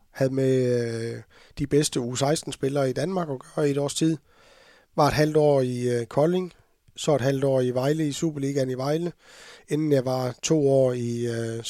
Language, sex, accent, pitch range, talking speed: Danish, male, native, 120-145 Hz, 200 wpm